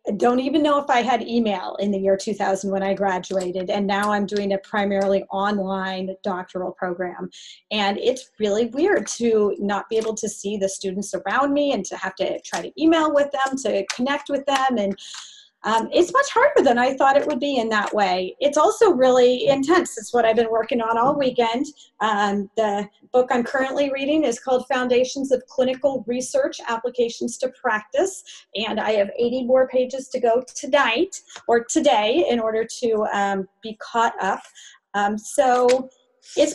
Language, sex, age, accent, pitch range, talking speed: English, female, 30-49, American, 205-275 Hz, 185 wpm